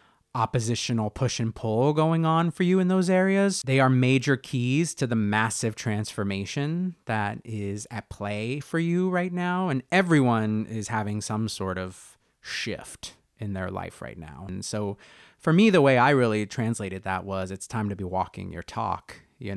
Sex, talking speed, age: male, 180 wpm, 30-49